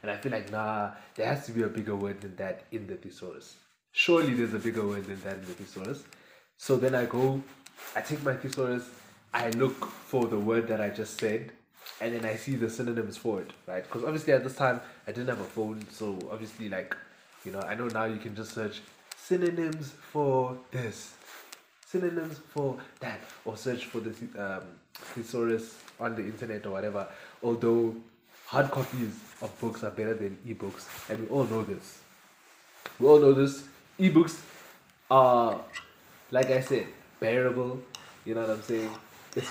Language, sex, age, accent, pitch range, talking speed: English, male, 20-39, South African, 110-135 Hz, 185 wpm